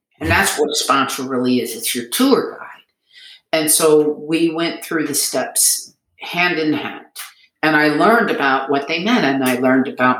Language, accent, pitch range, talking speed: English, American, 125-155 Hz, 190 wpm